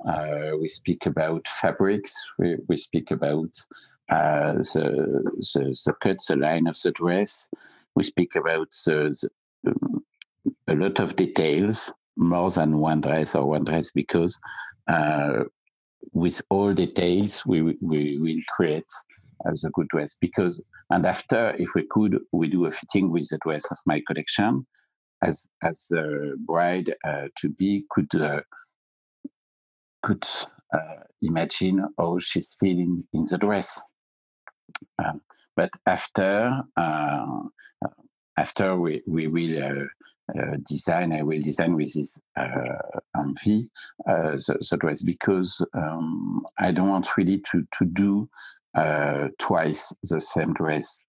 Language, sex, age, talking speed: English, male, 50-69, 145 wpm